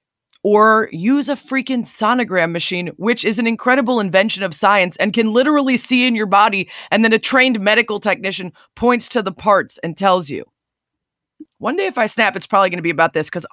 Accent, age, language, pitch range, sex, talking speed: American, 30-49, English, 160-225 Hz, female, 205 wpm